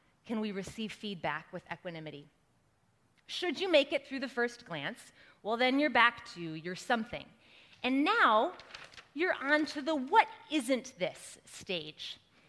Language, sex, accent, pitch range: English, female, American, 180-270 Hz